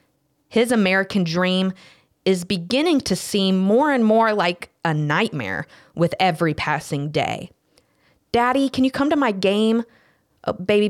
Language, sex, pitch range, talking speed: English, female, 165-215 Hz, 140 wpm